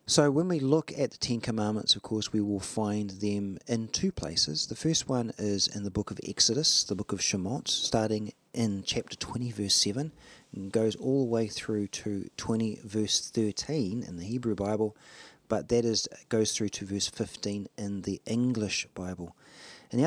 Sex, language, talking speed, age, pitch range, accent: male, English, 190 wpm, 40-59, 100-125 Hz, Australian